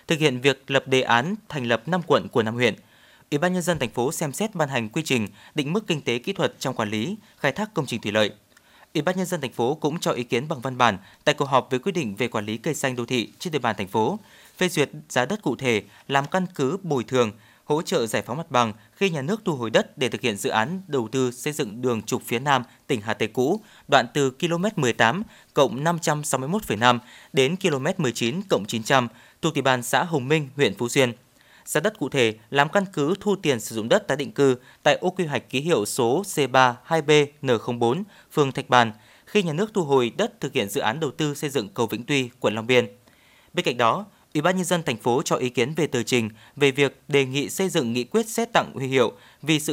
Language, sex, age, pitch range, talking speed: Vietnamese, male, 20-39, 120-165 Hz, 250 wpm